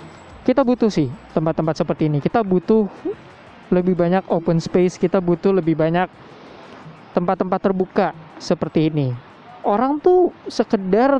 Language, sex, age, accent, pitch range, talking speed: Indonesian, male, 20-39, native, 165-200 Hz, 125 wpm